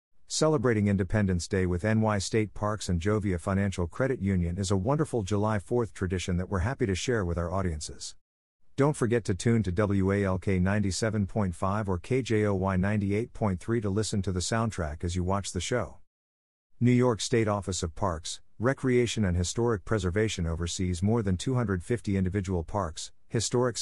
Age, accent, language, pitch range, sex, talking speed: 50-69, American, English, 90-115 Hz, male, 160 wpm